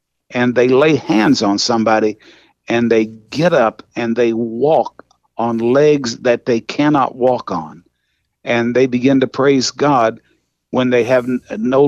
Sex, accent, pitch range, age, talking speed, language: male, American, 115-140 Hz, 50-69, 155 wpm, English